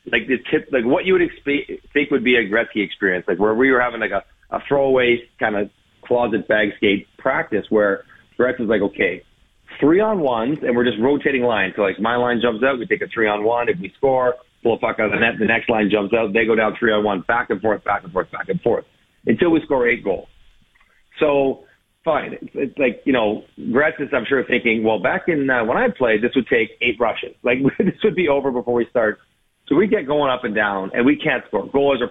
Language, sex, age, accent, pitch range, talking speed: English, male, 40-59, American, 115-145 Hz, 250 wpm